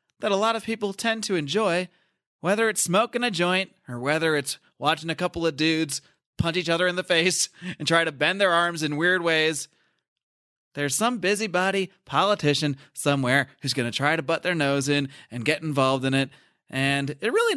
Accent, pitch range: American, 155-205 Hz